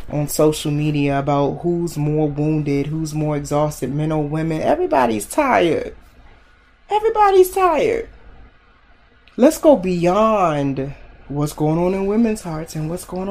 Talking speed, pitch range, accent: 130 wpm, 150-215 Hz, American